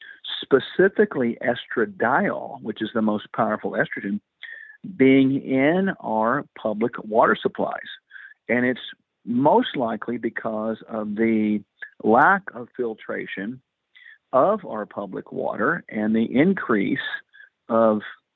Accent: American